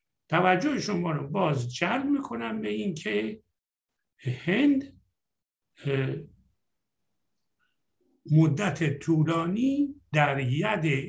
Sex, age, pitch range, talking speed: male, 60-79, 130-175 Hz, 70 wpm